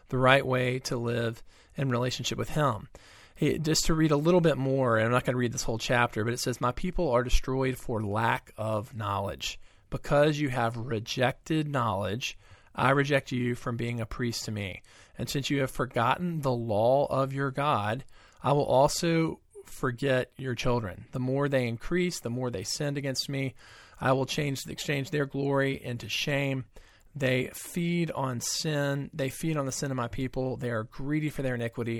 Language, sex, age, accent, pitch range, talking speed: English, male, 40-59, American, 115-140 Hz, 195 wpm